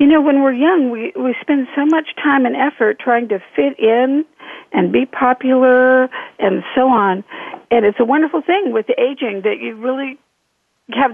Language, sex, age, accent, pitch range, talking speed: English, female, 50-69, American, 210-285 Hz, 185 wpm